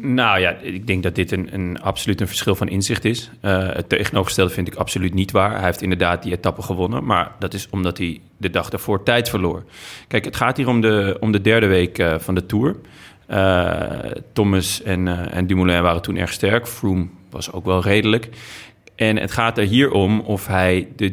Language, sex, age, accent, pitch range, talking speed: Dutch, male, 30-49, Dutch, 95-110 Hz, 215 wpm